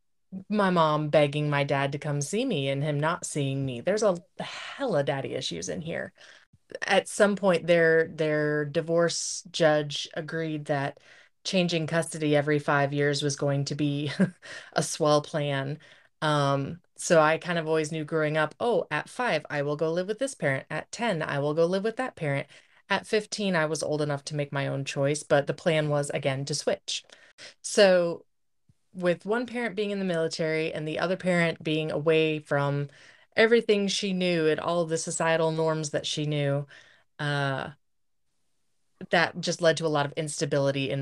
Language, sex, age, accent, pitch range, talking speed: English, female, 30-49, American, 145-175 Hz, 180 wpm